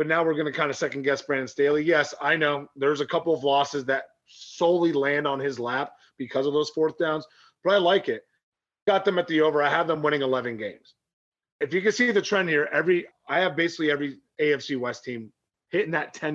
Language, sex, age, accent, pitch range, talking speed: English, male, 30-49, American, 135-165 Hz, 230 wpm